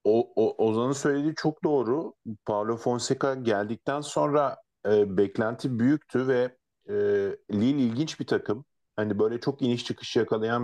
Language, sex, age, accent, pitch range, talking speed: Turkish, male, 50-69, native, 110-135 Hz, 140 wpm